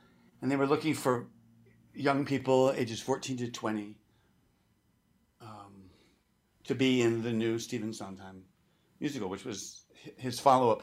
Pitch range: 105-130 Hz